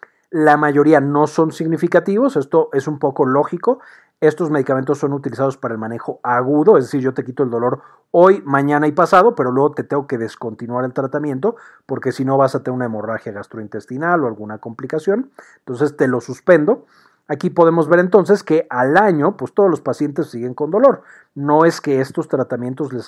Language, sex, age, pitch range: Spanish, male, 40-59, 125-165 Hz